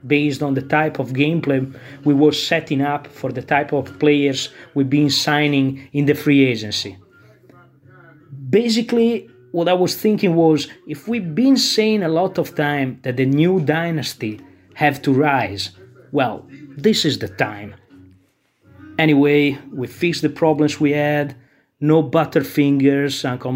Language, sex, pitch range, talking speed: English, male, 135-150 Hz, 150 wpm